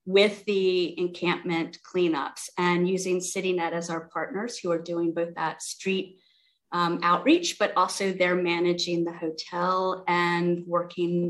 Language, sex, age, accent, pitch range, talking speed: English, female, 30-49, American, 170-195 Hz, 140 wpm